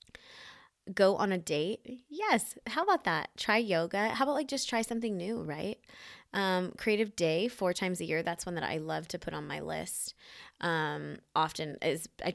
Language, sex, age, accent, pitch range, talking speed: English, female, 20-39, American, 160-200 Hz, 190 wpm